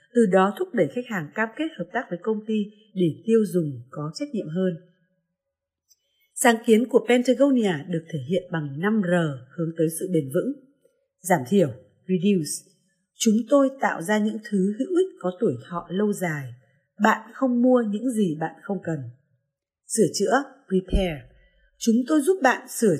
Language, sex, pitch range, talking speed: Vietnamese, female, 170-235 Hz, 170 wpm